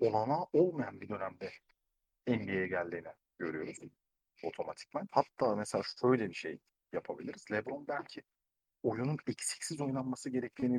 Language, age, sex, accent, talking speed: Turkish, 50-69, male, native, 110 wpm